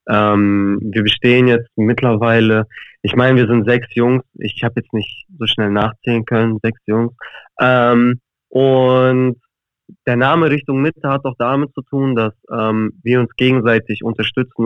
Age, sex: 20-39, male